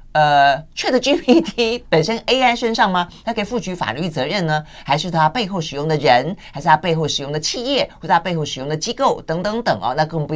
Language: Chinese